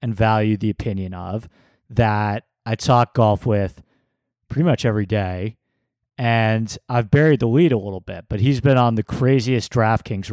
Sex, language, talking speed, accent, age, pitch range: male, English, 170 wpm, American, 30-49, 105-130 Hz